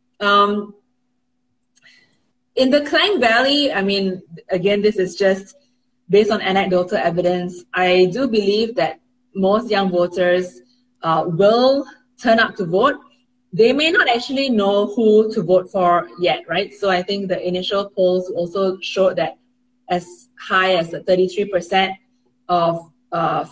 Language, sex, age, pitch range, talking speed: English, female, 20-39, 180-220 Hz, 140 wpm